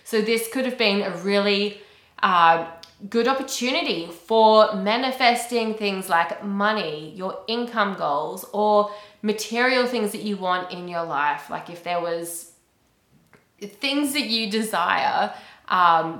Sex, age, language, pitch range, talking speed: female, 20-39, English, 180-225 Hz, 135 wpm